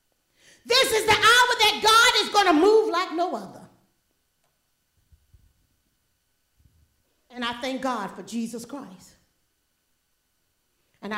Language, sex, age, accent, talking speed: English, female, 40-59, American, 115 wpm